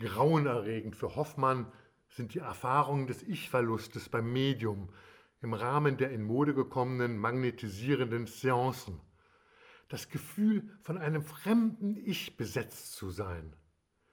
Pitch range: 110-150 Hz